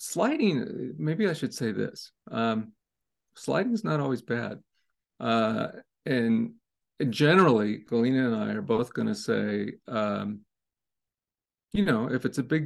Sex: male